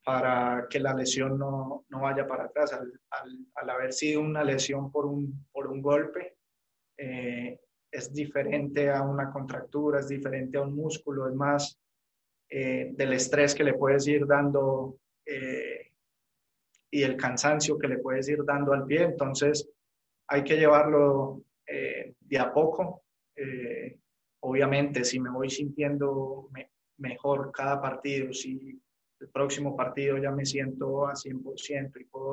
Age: 20-39